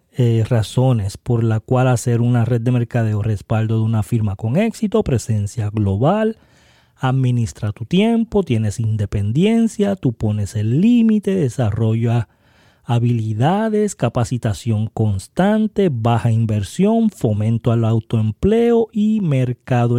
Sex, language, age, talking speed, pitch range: male, Spanish, 30-49, 115 wpm, 115-160 Hz